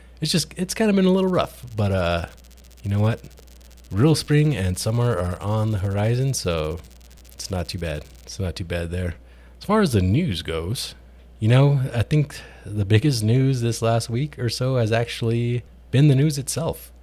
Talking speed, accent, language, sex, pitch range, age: 195 wpm, American, English, male, 85-125 Hz, 20-39